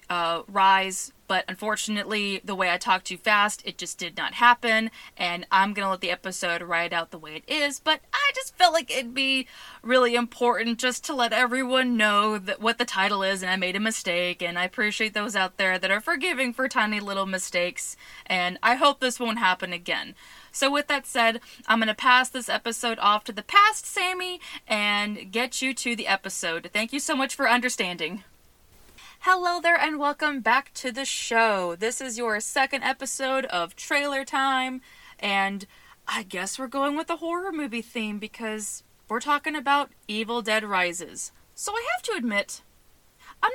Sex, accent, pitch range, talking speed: female, American, 190-265 Hz, 185 wpm